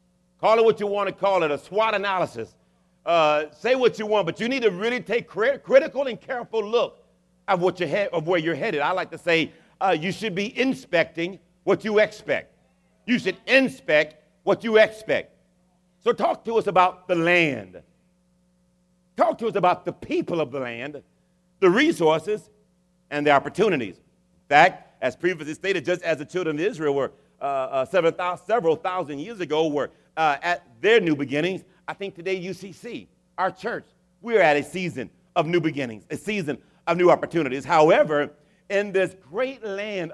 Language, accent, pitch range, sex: English, American, 155-200 Hz, male